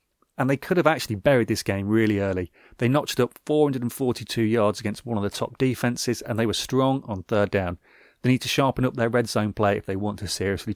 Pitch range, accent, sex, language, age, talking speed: 110-135 Hz, British, male, English, 30-49, 235 wpm